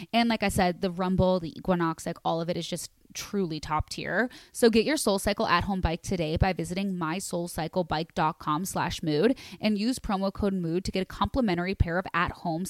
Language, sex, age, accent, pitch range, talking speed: English, female, 20-39, American, 170-210 Hz, 195 wpm